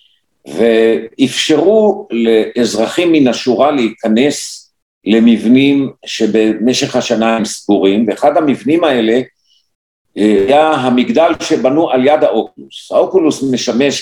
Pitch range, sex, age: 120-155 Hz, male, 50-69